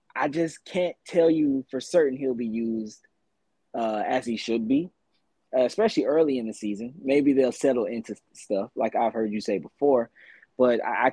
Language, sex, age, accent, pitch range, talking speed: English, male, 20-39, American, 110-140 Hz, 180 wpm